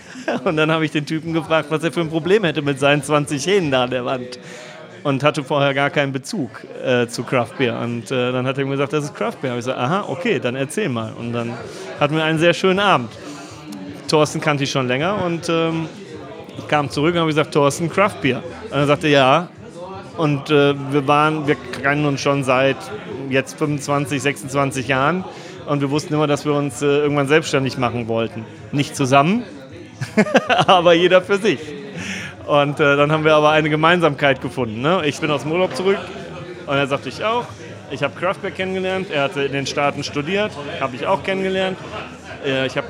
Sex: male